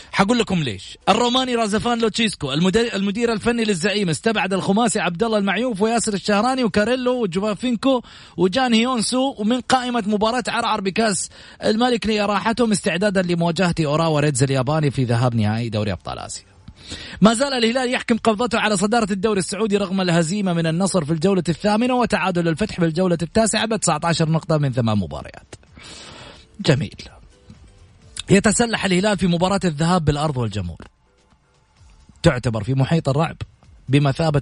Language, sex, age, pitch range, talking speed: English, male, 30-49, 130-215 Hz, 135 wpm